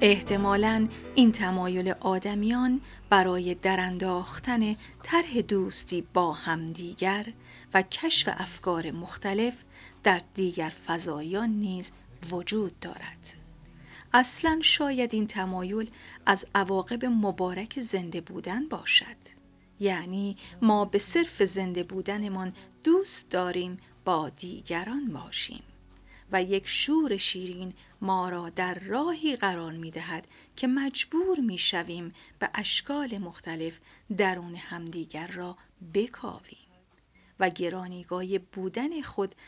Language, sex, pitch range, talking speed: Persian, female, 180-235 Hz, 105 wpm